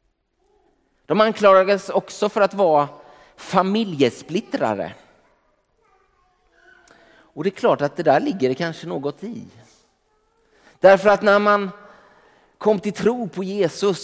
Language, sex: Swedish, male